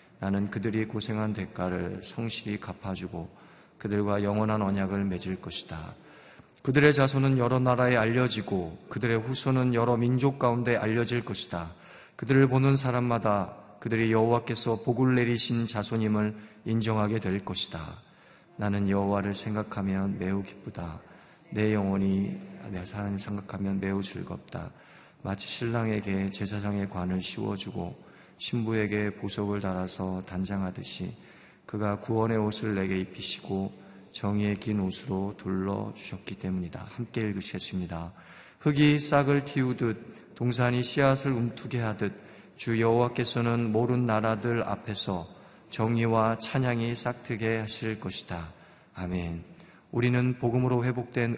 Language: Korean